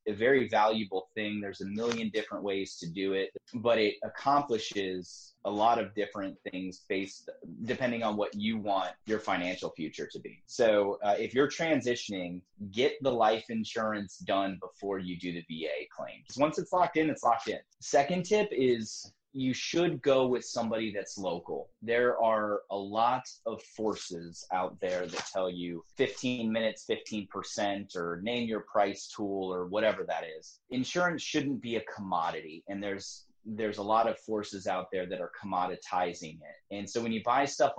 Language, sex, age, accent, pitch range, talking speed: English, male, 30-49, American, 95-120 Hz, 175 wpm